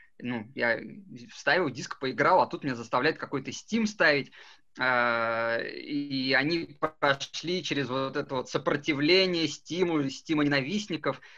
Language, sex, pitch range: Russian, male, 135-170 Hz